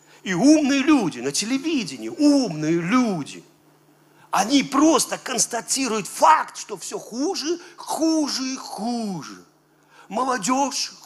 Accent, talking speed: native, 100 wpm